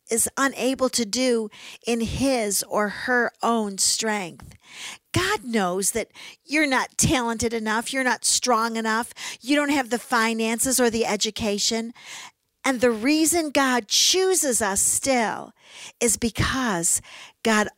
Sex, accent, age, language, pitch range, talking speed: female, American, 50-69, English, 205-265 Hz, 130 wpm